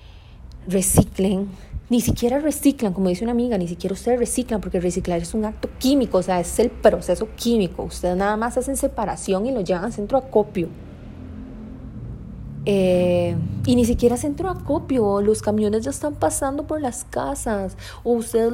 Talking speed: 165 wpm